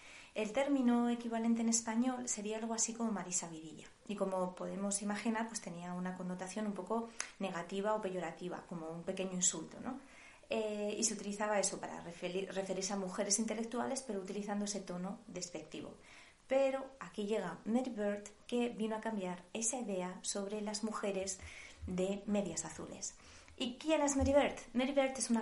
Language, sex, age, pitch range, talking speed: Spanish, female, 20-39, 190-230 Hz, 170 wpm